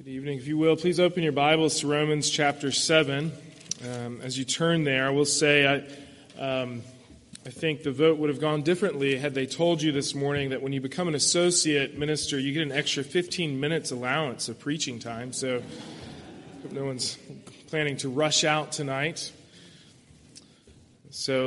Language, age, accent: English, 20-39, American